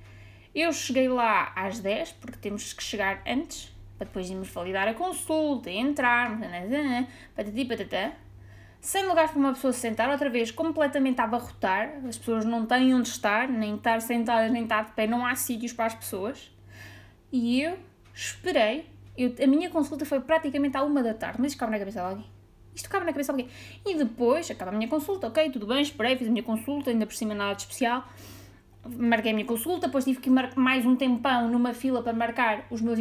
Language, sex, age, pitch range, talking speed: Portuguese, female, 20-39, 215-290 Hz, 200 wpm